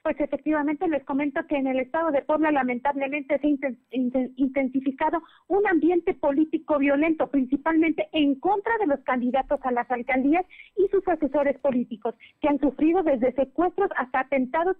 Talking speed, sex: 155 wpm, female